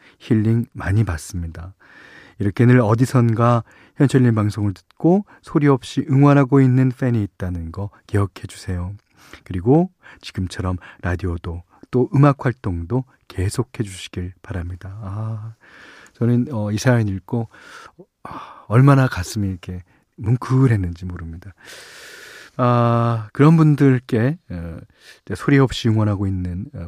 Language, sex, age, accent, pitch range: Korean, male, 40-59, native, 95-135 Hz